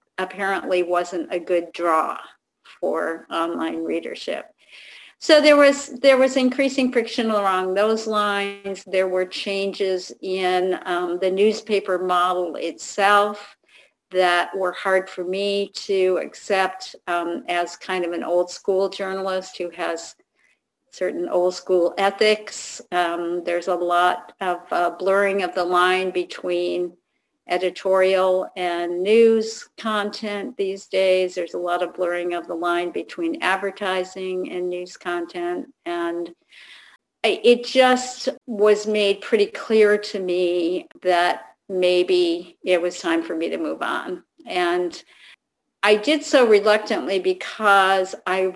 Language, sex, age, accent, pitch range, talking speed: English, female, 50-69, American, 180-210 Hz, 130 wpm